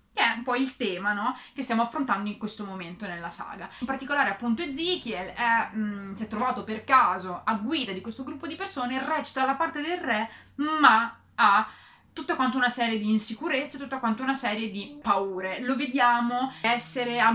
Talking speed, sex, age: 195 wpm, female, 30-49